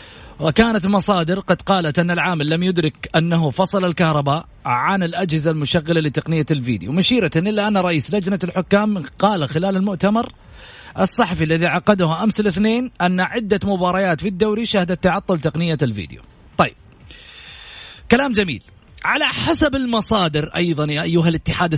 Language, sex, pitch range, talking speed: Arabic, male, 165-240 Hz, 140 wpm